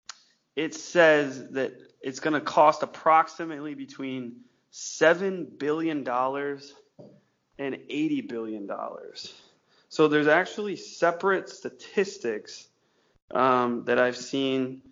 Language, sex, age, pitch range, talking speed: English, male, 20-39, 125-160 Hz, 90 wpm